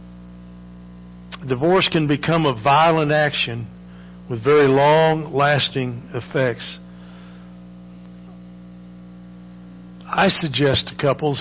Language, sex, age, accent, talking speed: English, male, 50-69, American, 75 wpm